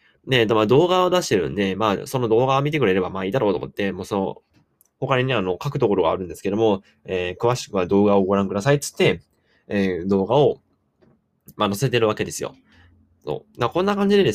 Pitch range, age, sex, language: 95-140 Hz, 20-39, male, Japanese